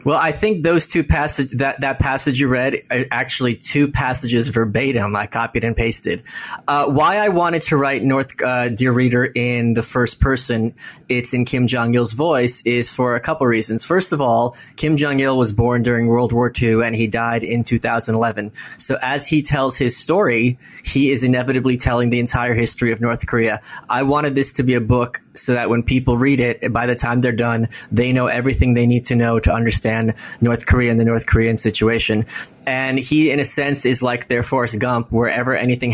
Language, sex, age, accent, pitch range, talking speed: English, male, 20-39, American, 115-130 Hz, 205 wpm